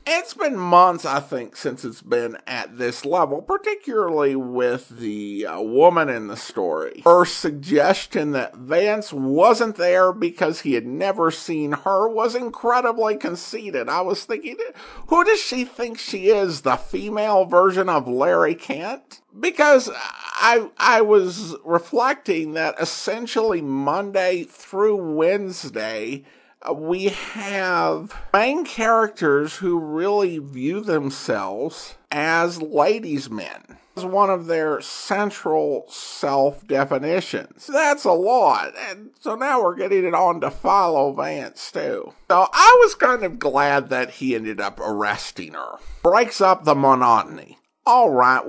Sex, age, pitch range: male, 50-69, 140-220 Hz